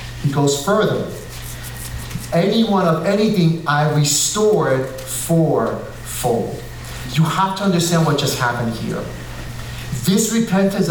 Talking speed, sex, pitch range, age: 110 wpm, male, 130-180 Hz, 40-59